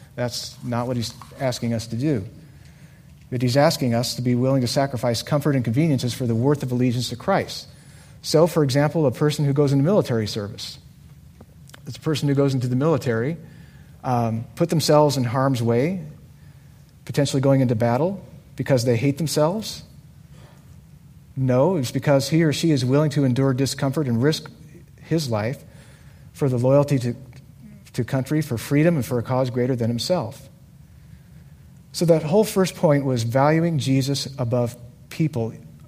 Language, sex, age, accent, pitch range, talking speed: English, male, 40-59, American, 125-150 Hz, 165 wpm